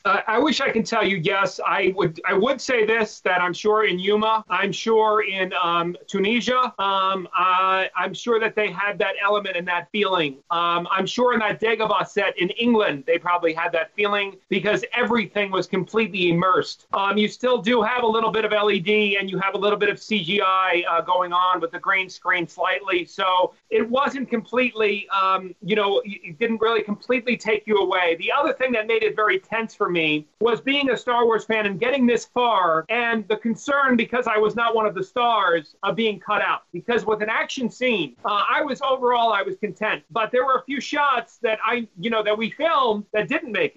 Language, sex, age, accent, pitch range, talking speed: English, male, 30-49, American, 195-235 Hz, 215 wpm